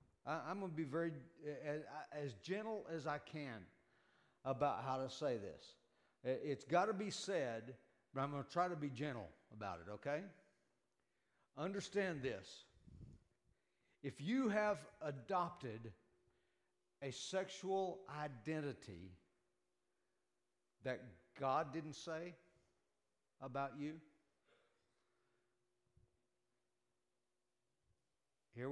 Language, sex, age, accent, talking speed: English, male, 60-79, American, 100 wpm